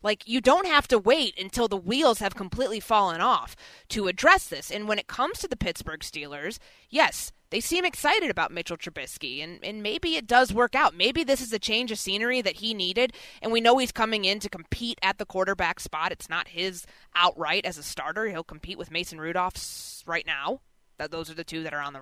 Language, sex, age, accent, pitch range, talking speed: English, female, 20-39, American, 170-230 Hz, 225 wpm